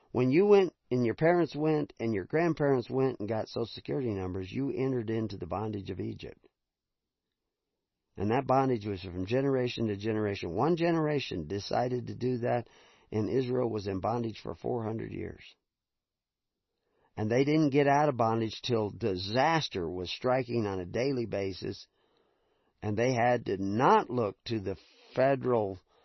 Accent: American